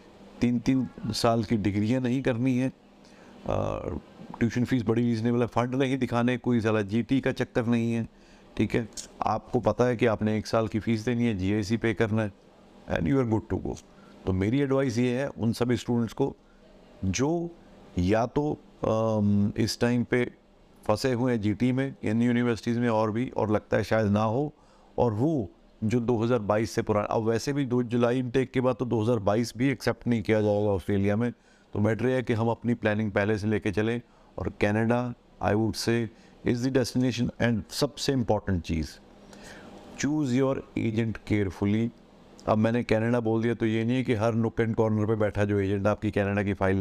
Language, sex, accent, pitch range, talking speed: Hindi, male, native, 105-125 Hz, 190 wpm